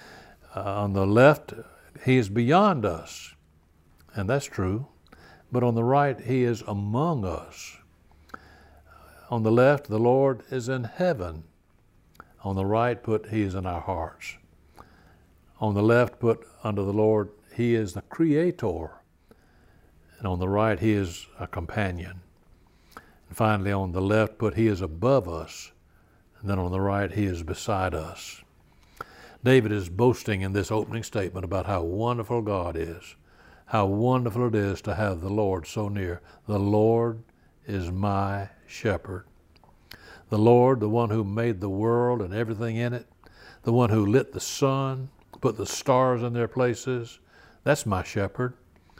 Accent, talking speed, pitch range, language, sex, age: American, 160 wpm, 95-125 Hz, English, male, 60-79